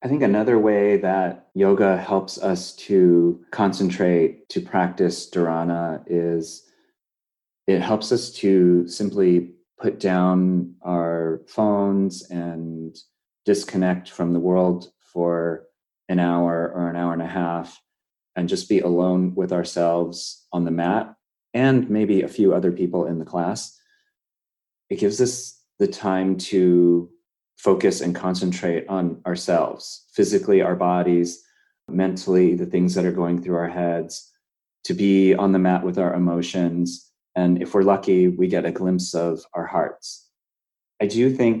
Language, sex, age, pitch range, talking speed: English, male, 30-49, 85-100 Hz, 145 wpm